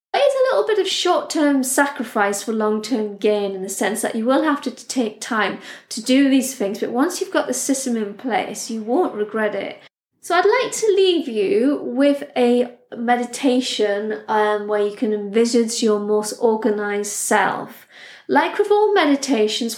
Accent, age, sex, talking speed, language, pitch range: British, 30-49, female, 175 wpm, English, 210-260 Hz